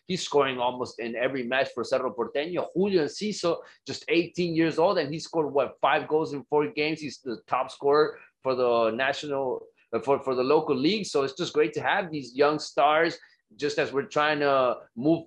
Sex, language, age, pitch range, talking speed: male, English, 30-49, 125-150 Hz, 200 wpm